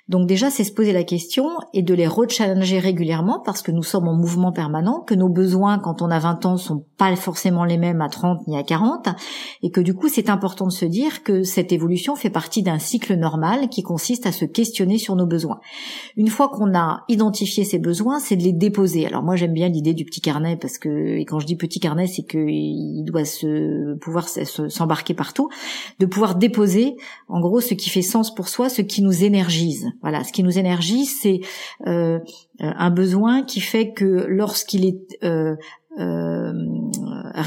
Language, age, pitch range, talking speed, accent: French, 40-59, 165-210 Hz, 205 wpm, French